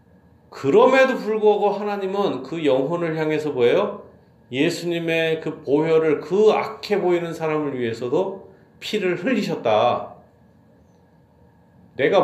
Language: Korean